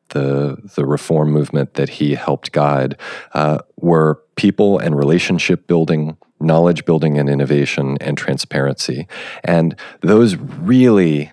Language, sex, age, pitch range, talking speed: English, male, 40-59, 70-80 Hz, 120 wpm